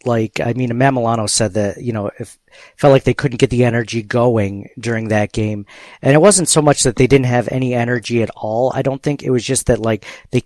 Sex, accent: male, American